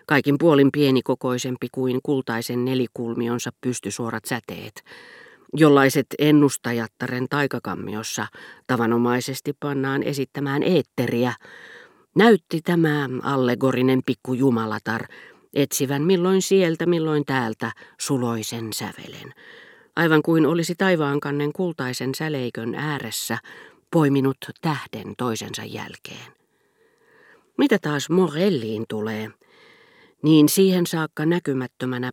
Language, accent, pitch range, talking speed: Finnish, native, 125-175 Hz, 85 wpm